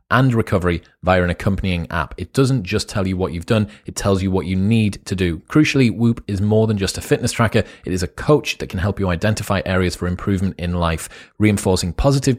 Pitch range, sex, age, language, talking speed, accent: 95-115 Hz, male, 30-49, English, 230 wpm, British